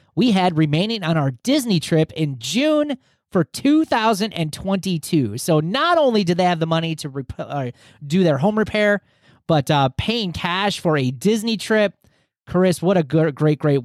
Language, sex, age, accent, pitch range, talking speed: English, male, 30-49, American, 140-220 Hz, 165 wpm